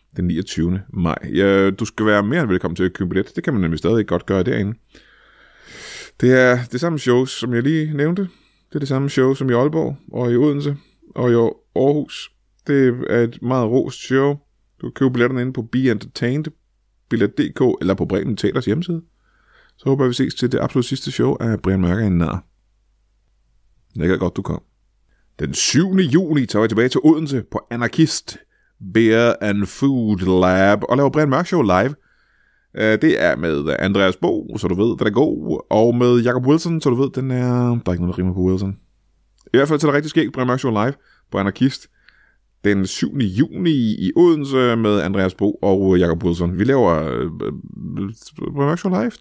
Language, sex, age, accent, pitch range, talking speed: Danish, male, 20-39, native, 100-145 Hz, 185 wpm